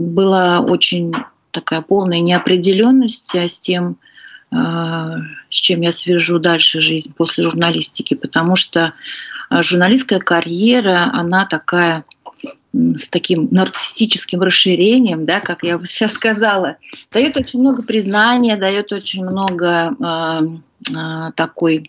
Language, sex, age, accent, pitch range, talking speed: Russian, female, 30-49, native, 165-200 Hz, 105 wpm